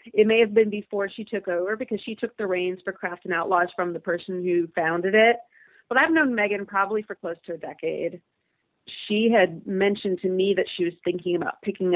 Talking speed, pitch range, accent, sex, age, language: 220 wpm, 175-230 Hz, American, female, 30-49, English